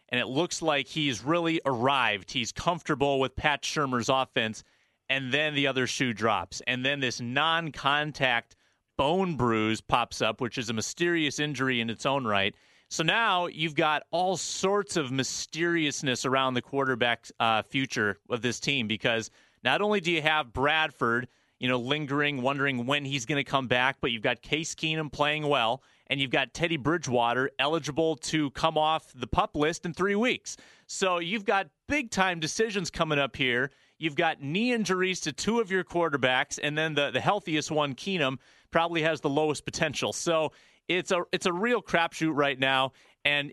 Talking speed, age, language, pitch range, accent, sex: 180 wpm, 30-49, English, 130-170 Hz, American, male